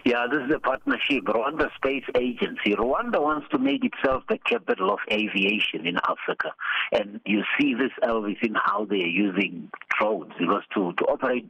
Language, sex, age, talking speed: English, male, 60-79, 170 wpm